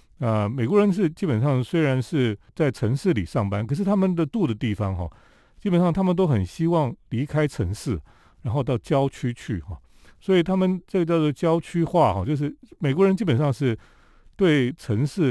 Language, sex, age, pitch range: Chinese, male, 40-59, 105-165 Hz